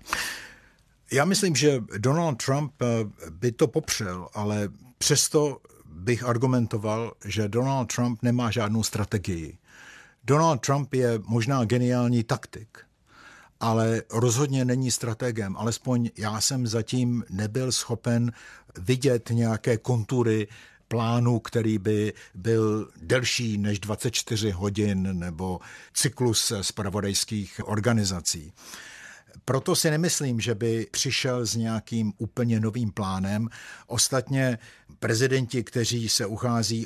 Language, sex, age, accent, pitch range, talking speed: Czech, male, 50-69, native, 105-120 Hz, 105 wpm